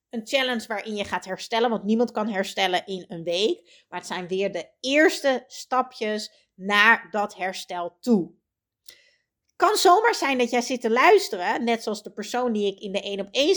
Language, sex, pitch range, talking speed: Dutch, female, 200-270 Hz, 195 wpm